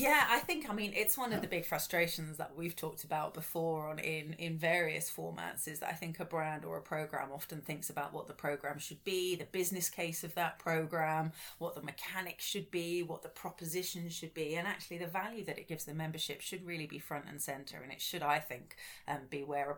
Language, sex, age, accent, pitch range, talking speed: English, female, 30-49, British, 150-175 Hz, 235 wpm